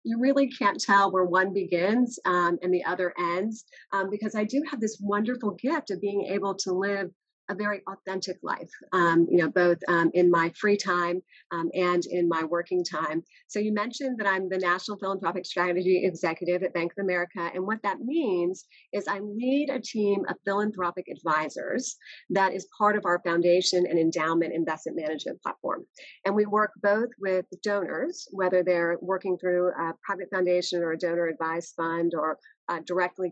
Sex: female